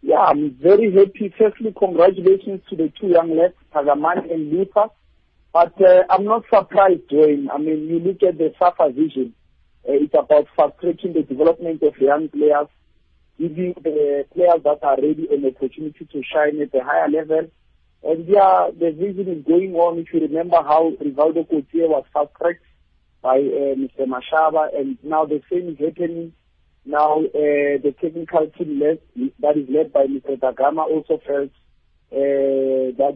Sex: male